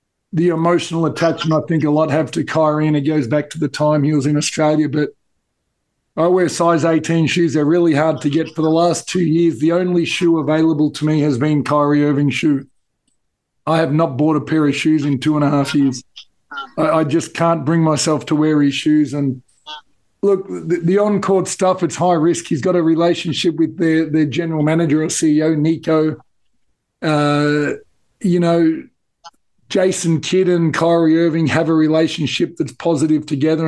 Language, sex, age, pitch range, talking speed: English, male, 50-69, 150-170 Hz, 190 wpm